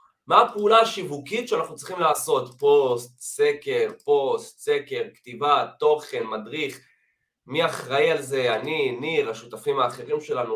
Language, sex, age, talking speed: Hebrew, male, 20-39, 125 wpm